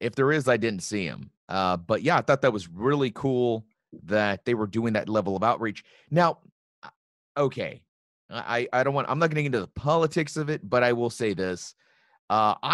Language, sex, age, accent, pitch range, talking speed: English, male, 30-49, American, 105-140 Hz, 205 wpm